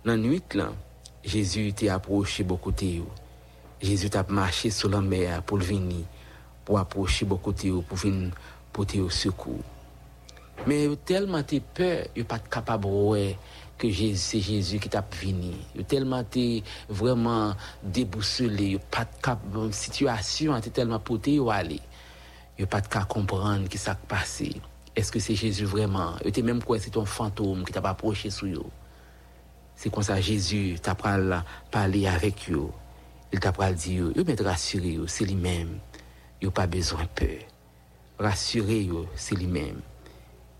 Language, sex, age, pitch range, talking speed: English, male, 60-79, 90-110 Hz, 155 wpm